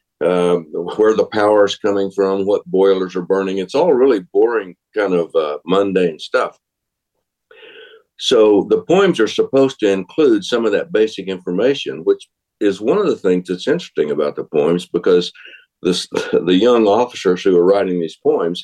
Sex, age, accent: male, 50-69, American